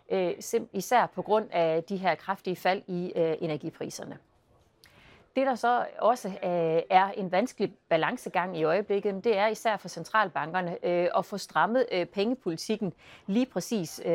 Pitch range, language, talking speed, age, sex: 170-220 Hz, Danish, 130 wpm, 40-59, female